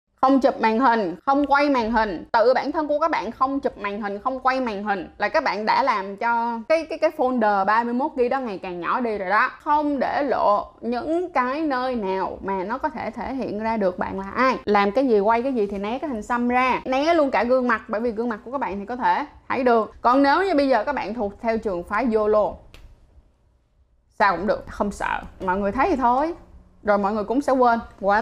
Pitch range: 200-255 Hz